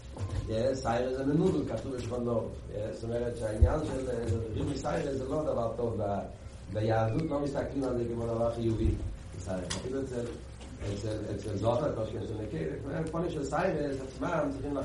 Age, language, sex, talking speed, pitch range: 40-59, Hebrew, male, 140 wpm, 105-135 Hz